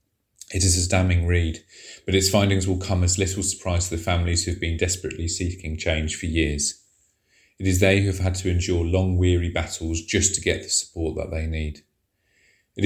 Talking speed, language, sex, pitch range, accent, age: 205 wpm, English, male, 80-95 Hz, British, 30-49